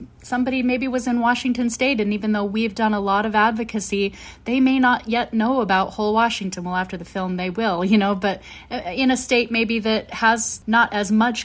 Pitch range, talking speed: 185-225 Hz, 215 wpm